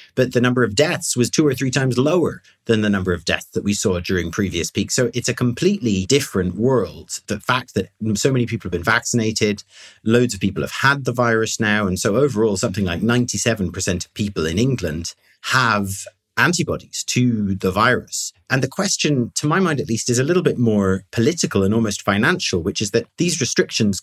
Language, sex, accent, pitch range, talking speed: English, male, British, 100-125 Hz, 205 wpm